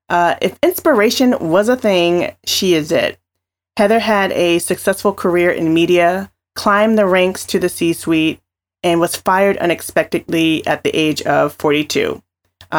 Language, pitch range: English, 155-195 Hz